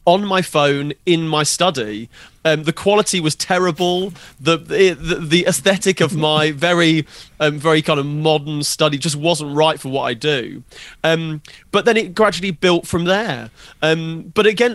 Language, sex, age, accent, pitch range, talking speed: English, male, 30-49, British, 140-170 Hz, 170 wpm